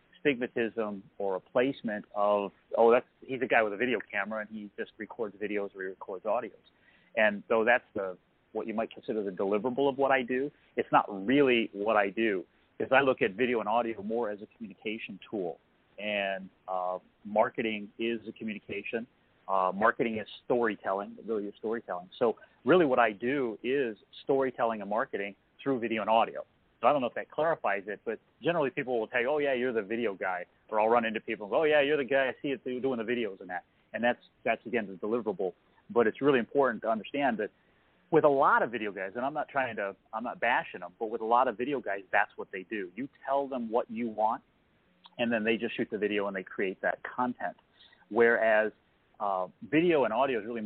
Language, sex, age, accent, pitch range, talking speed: English, male, 30-49, American, 105-130 Hz, 220 wpm